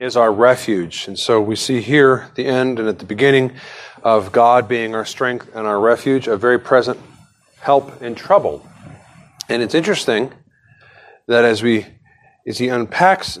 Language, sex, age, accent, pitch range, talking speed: English, male, 40-59, American, 115-135 Hz, 170 wpm